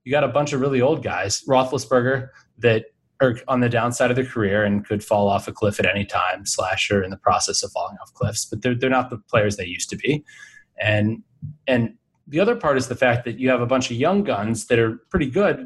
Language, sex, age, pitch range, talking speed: English, male, 20-39, 105-130 Hz, 245 wpm